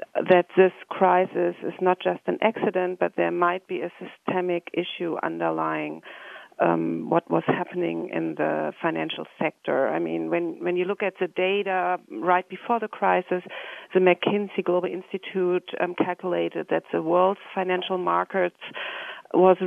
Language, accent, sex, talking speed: English, German, female, 150 wpm